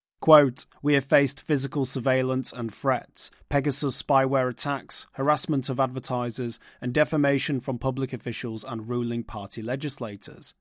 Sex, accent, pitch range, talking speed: male, British, 120-145 Hz, 130 wpm